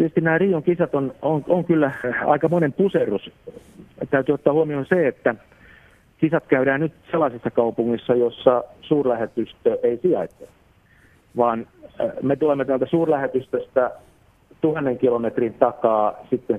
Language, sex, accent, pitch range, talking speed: Finnish, male, native, 105-140 Hz, 120 wpm